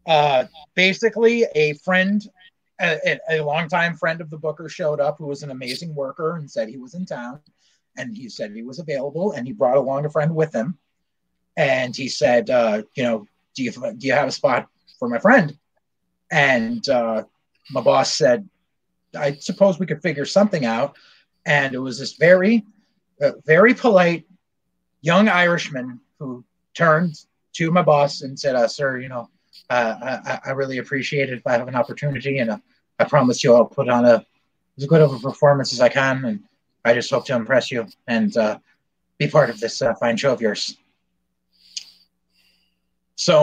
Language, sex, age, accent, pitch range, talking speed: English, male, 30-49, American, 125-195 Hz, 180 wpm